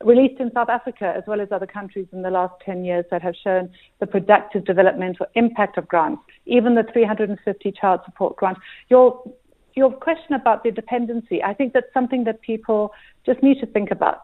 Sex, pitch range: female, 200-240 Hz